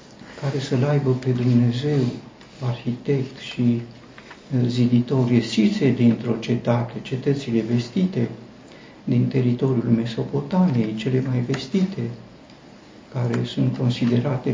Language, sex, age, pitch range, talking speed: Romanian, male, 60-79, 120-160 Hz, 90 wpm